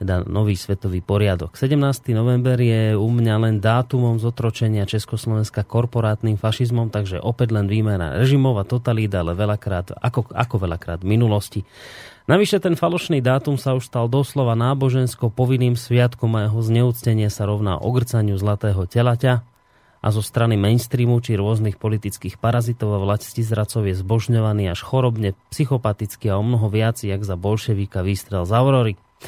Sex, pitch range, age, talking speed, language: male, 105-125 Hz, 30-49, 150 wpm, Slovak